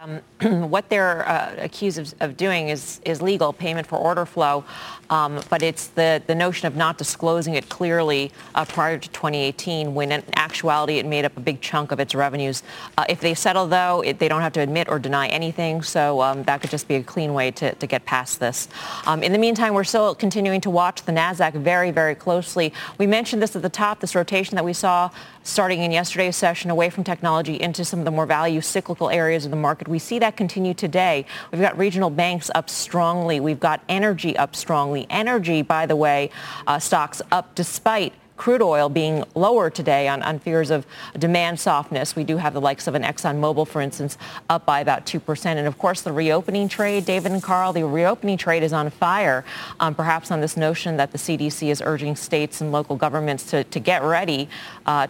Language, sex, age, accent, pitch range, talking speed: English, female, 30-49, American, 150-180 Hz, 215 wpm